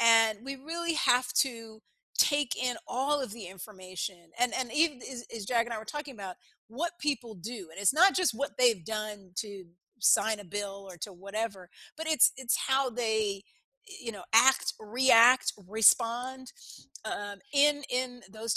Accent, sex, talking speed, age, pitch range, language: American, female, 170 wpm, 40-59, 210-280 Hz, English